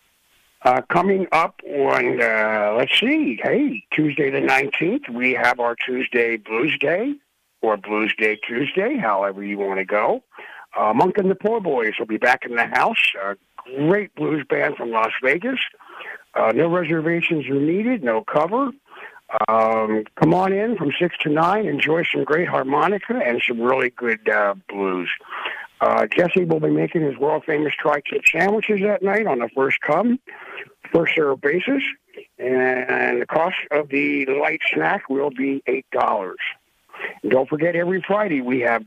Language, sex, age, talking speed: English, male, 60-79, 160 wpm